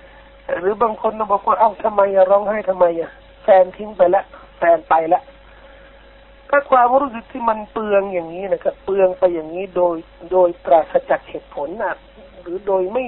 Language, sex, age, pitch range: Thai, male, 60-79, 180-270 Hz